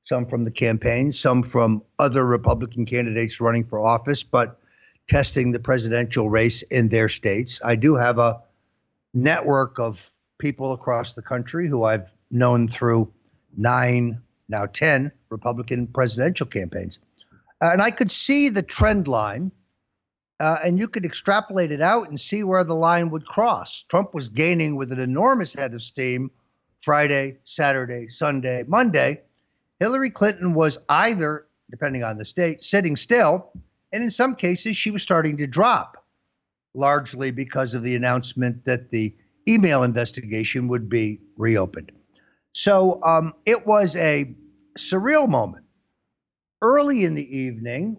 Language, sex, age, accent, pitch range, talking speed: English, male, 60-79, American, 120-165 Hz, 145 wpm